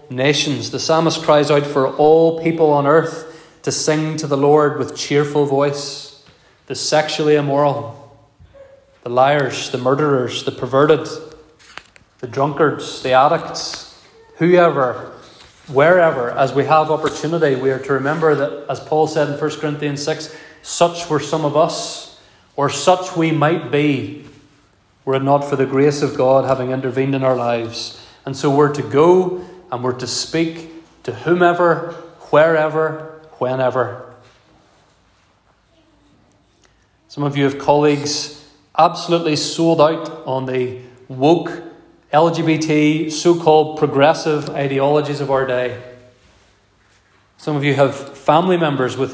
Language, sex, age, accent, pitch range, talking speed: English, male, 30-49, Irish, 135-160 Hz, 135 wpm